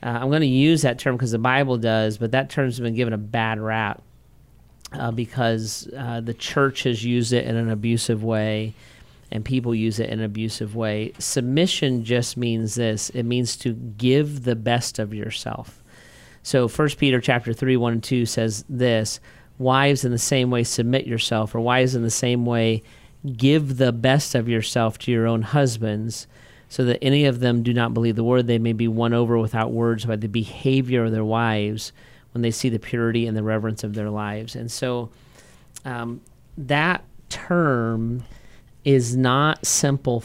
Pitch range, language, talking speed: 115-130 Hz, English, 185 wpm